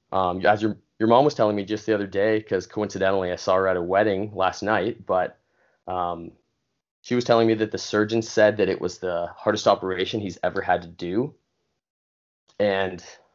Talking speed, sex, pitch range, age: 200 wpm, male, 85-105 Hz, 20-39